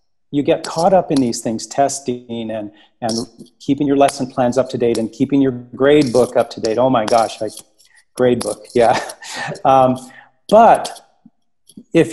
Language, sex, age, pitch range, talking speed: English, male, 40-59, 125-160 Hz, 175 wpm